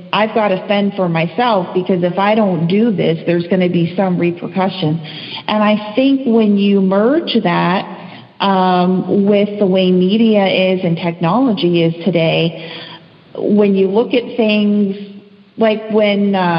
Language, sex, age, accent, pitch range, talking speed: English, female, 40-59, American, 175-210 Hz, 150 wpm